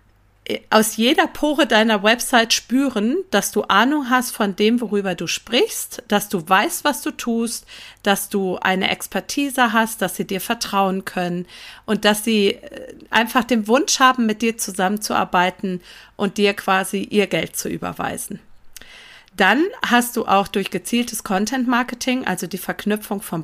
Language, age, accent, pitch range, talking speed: German, 40-59, German, 190-240 Hz, 155 wpm